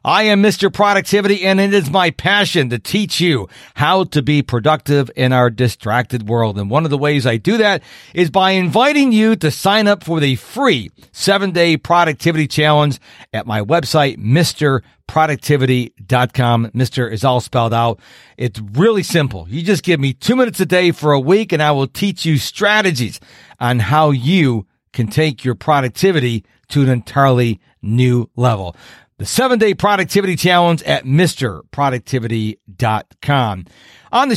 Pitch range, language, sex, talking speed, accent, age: 125-190 Hz, English, male, 160 wpm, American, 50-69